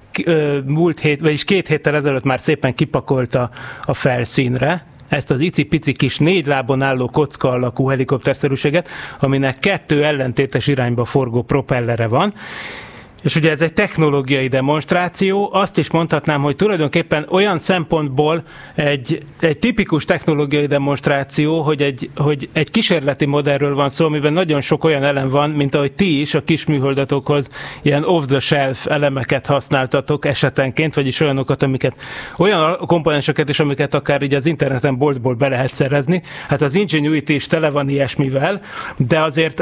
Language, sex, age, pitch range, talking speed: Hungarian, male, 30-49, 135-160 Hz, 140 wpm